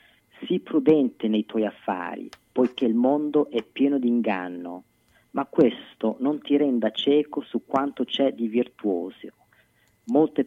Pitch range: 110-135 Hz